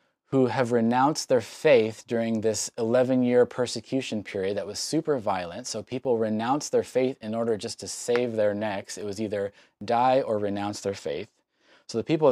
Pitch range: 115-135 Hz